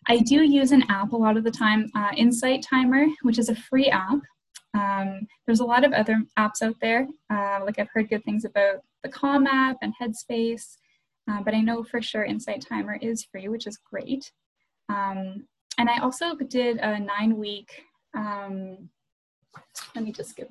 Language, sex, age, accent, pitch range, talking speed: English, female, 10-29, American, 205-255 Hz, 190 wpm